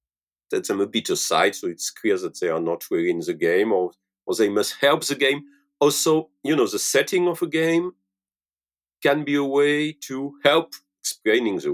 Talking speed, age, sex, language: 195 wpm, 40-59, male, English